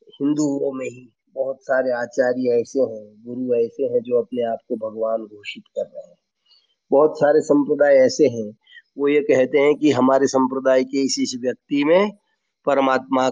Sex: male